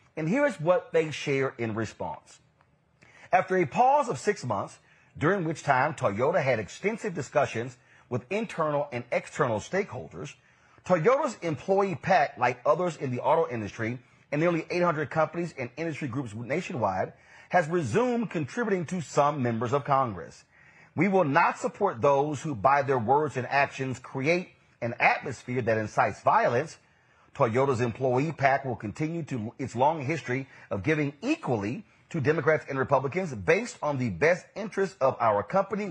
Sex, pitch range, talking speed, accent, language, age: male, 125-170 Hz, 150 wpm, American, English, 40-59